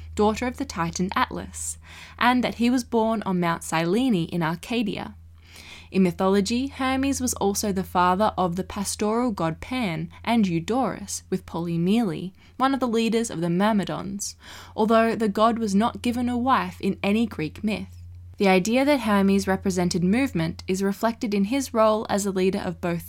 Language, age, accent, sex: English, 20-39, Australian, female